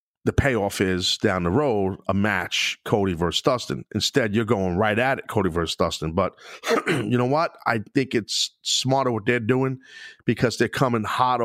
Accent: American